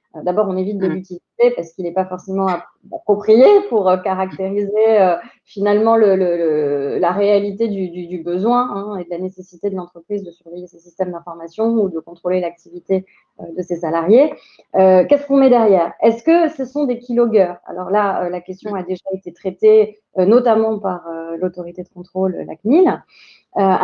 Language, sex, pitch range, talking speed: French, female, 180-220 Hz, 185 wpm